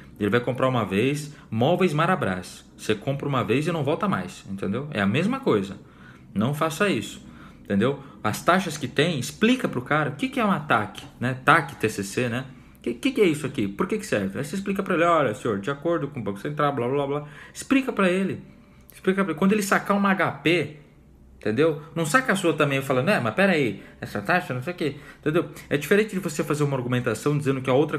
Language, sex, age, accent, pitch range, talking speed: Portuguese, male, 20-39, Brazilian, 120-180 Hz, 235 wpm